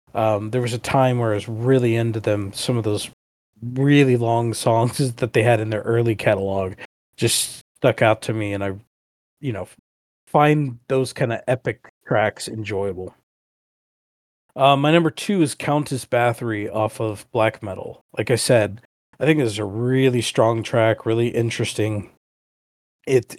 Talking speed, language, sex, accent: 165 wpm, English, male, American